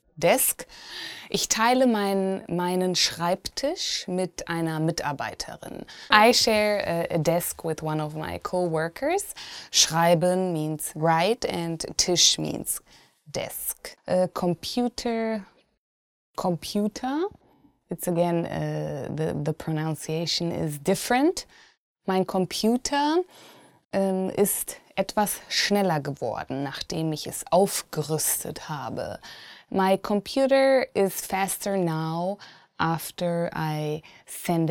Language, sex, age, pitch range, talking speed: English, female, 20-39, 160-205 Hz, 95 wpm